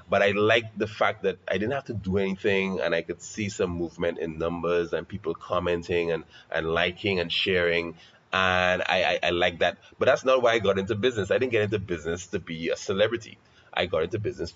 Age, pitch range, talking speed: 30-49, 85-115 Hz, 225 wpm